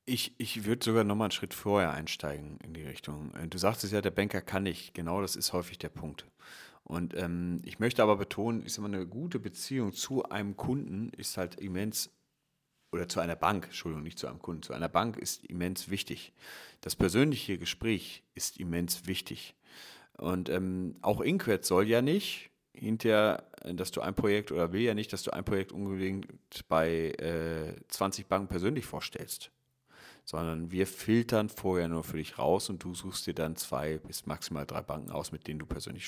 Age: 40-59